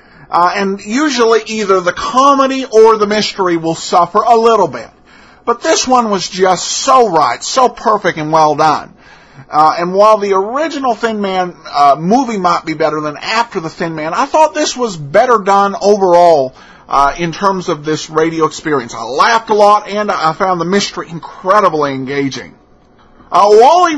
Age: 50-69